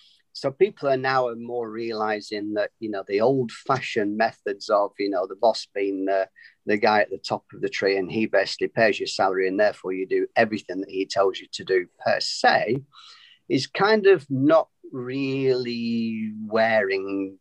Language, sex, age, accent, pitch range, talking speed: English, male, 40-59, British, 105-140 Hz, 185 wpm